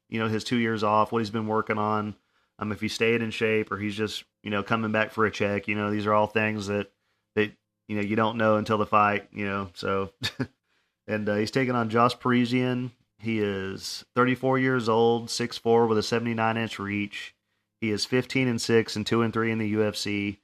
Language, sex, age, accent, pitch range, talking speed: English, male, 40-59, American, 105-120 Hz, 225 wpm